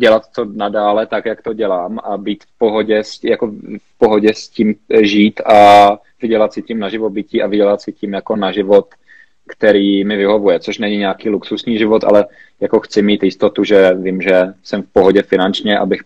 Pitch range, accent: 100-110 Hz, native